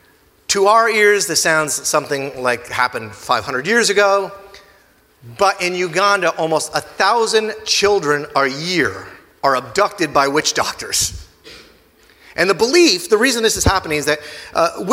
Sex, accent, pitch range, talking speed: male, American, 145-210 Hz, 140 wpm